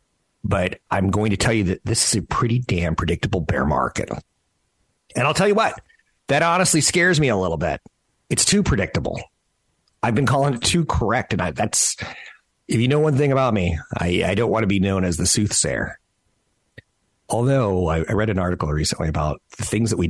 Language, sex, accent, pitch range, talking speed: English, male, American, 80-105 Hz, 200 wpm